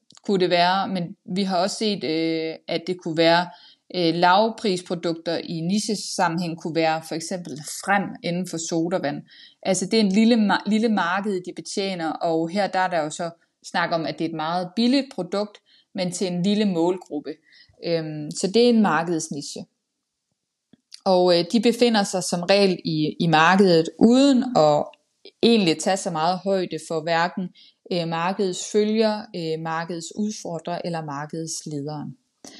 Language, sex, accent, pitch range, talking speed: Danish, female, native, 170-225 Hz, 150 wpm